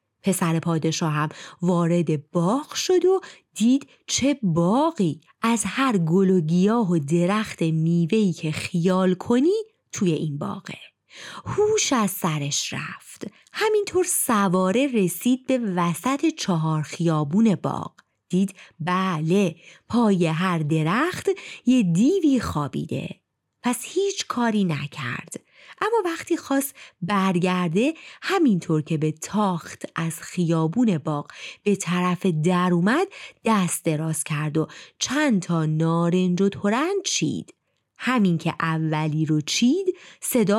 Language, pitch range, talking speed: Persian, 170-260 Hz, 115 wpm